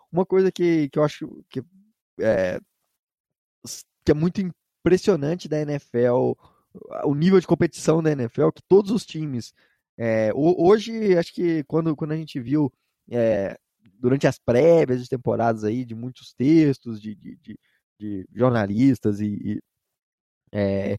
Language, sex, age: Portuguese, male, 20-39